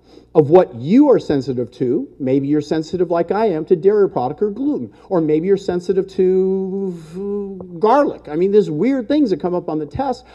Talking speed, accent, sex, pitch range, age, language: 195 wpm, American, male, 155-225 Hz, 50-69, English